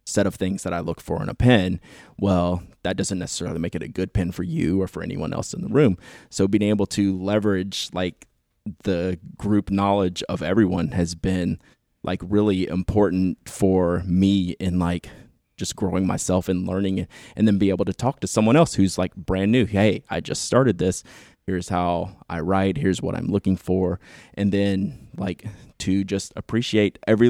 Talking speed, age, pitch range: 190 wpm, 20-39, 90-100 Hz